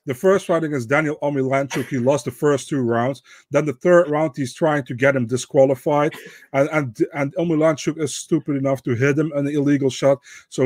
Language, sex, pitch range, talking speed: English, male, 130-145 Hz, 205 wpm